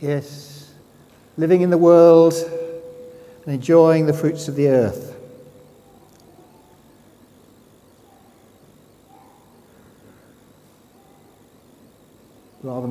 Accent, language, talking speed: British, English, 60 wpm